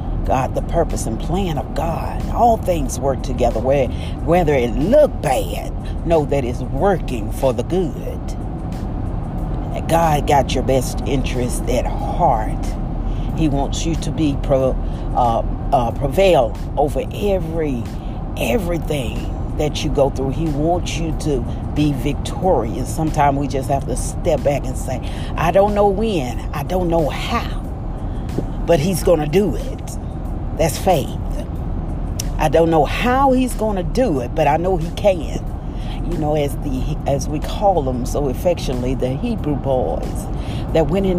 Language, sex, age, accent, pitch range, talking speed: English, female, 40-59, American, 120-180 Hz, 155 wpm